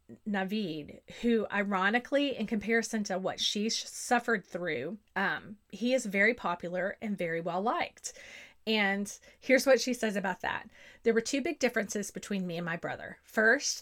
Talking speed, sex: 155 wpm, female